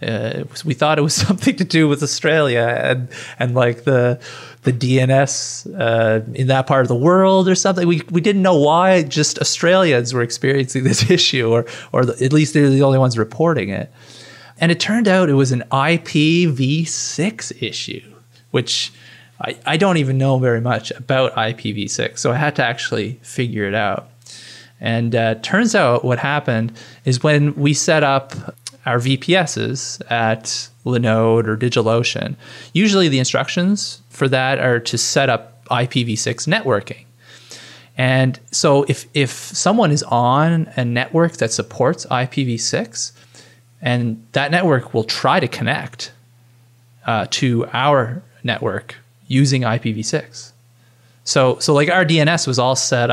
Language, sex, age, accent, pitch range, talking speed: English, male, 30-49, American, 120-150 Hz, 150 wpm